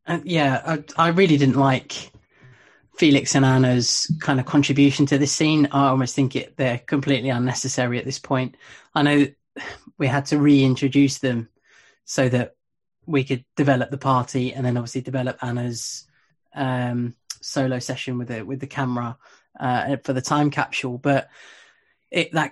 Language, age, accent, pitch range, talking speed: English, 20-39, British, 130-145 Hz, 150 wpm